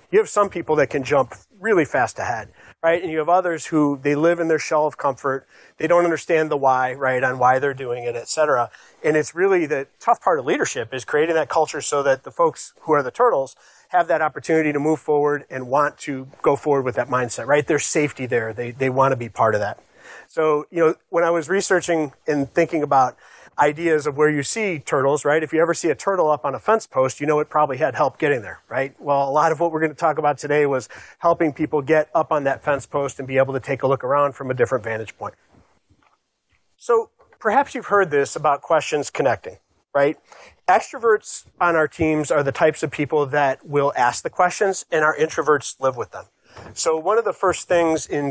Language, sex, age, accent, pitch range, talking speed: English, male, 40-59, American, 140-165 Hz, 235 wpm